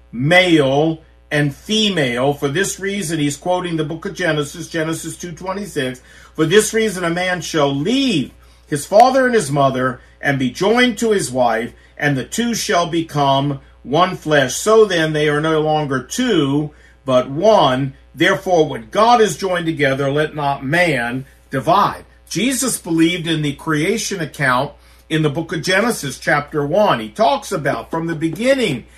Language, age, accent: English, 50-69, American